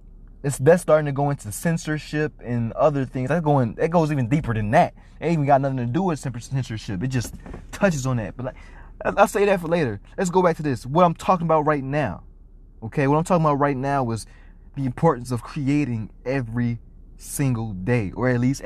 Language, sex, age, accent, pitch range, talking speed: English, male, 20-39, American, 120-160 Hz, 220 wpm